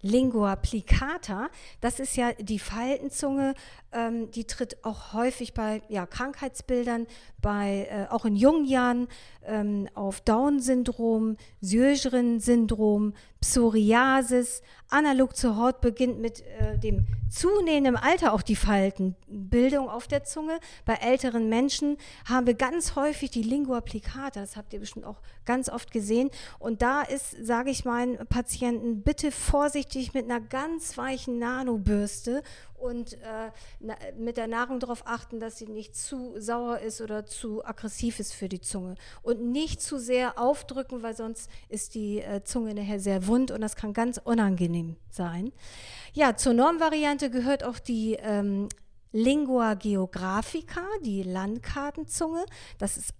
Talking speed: 140 wpm